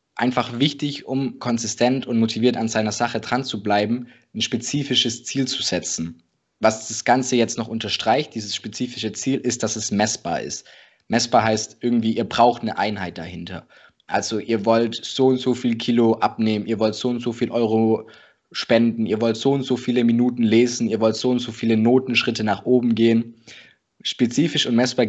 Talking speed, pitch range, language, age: 185 wpm, 110-125 Hz, German, 20-39